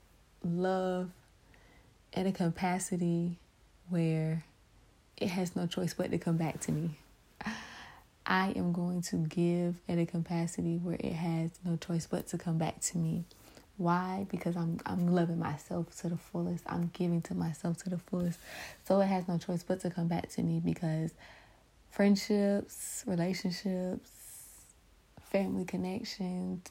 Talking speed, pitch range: 150 wpm, 165-185 Hz